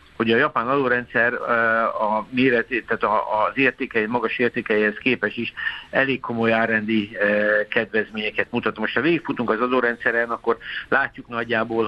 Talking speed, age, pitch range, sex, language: 135 wpm, 60-79, 110-125 Hz, male, Hungarian